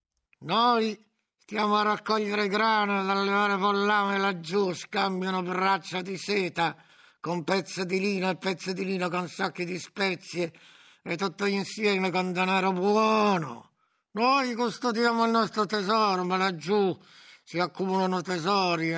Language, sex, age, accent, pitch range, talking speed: Italian, male, 60-79, native, 180-210 Hz, 135 wpm